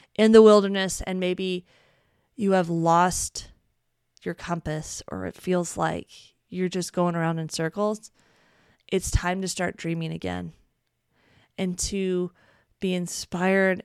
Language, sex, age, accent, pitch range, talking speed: English, female, 20-39, American, 170-200 Hz, 130 wpm